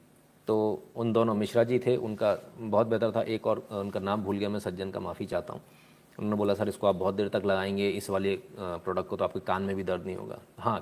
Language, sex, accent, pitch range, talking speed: Hindi, male, native, 105-145 Hz, 245 wpm